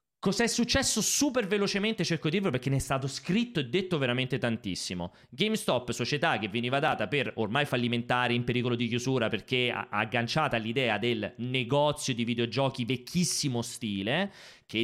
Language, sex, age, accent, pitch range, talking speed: Italian, male, 30-49, native, 115-160 Hz, 160 wpm